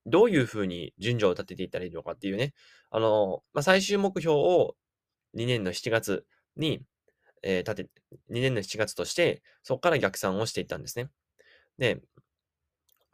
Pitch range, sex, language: 100-145 Hz, male, Japanese